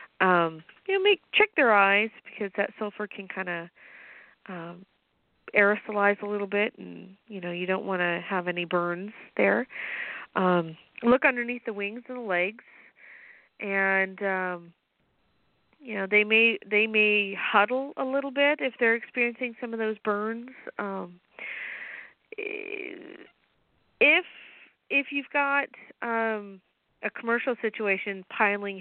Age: 40-59